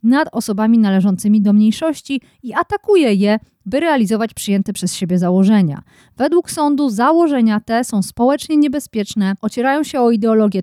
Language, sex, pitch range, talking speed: Polish, female, 195-260 Hz, 140 wpm